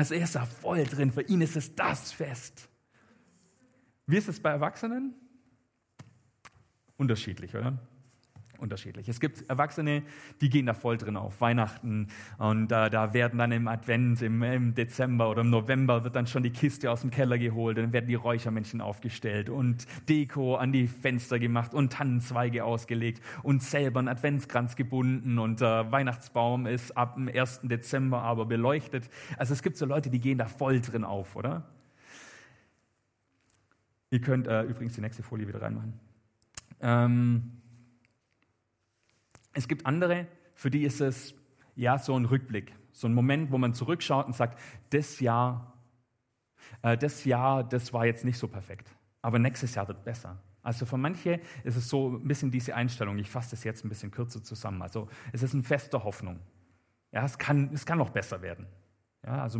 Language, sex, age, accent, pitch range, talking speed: German, male, 40-59, German, 115-135 Hz, 170 wpm